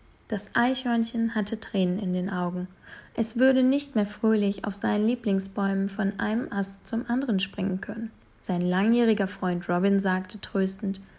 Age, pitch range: 20-39, 190-225 Hz